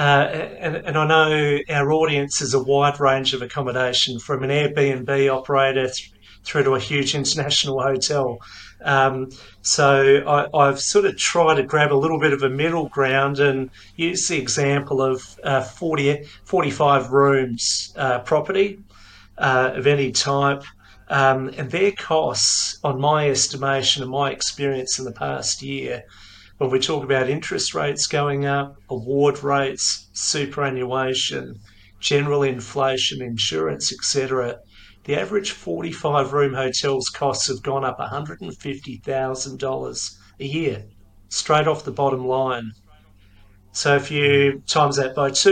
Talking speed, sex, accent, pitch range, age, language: 140 wpm, male, Australian, 130-145 Hz, 40-59, English